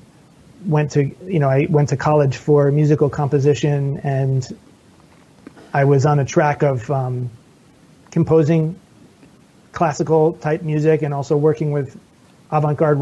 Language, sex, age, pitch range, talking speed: English, male, 30-49, 145-165 Hz, 130 wpm